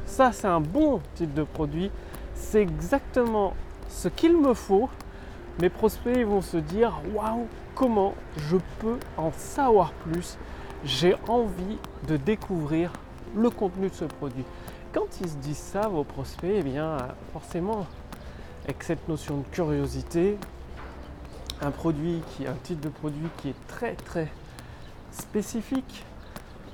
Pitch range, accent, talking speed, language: 145-220 Hz, French, 130 wpm, French